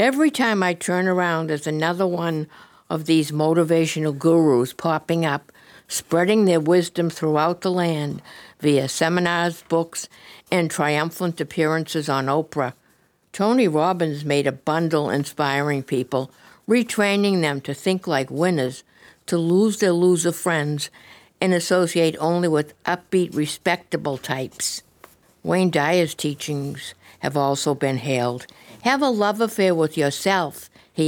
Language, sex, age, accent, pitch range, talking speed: English, female, 60-79, American, 145-180 Hz, 130 wpm